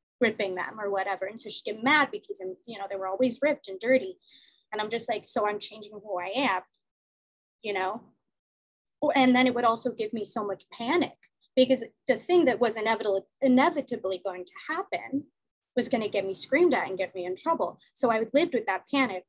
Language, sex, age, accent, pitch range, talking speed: English, female, 20-39, American, 195-250 Hz, 210 wpm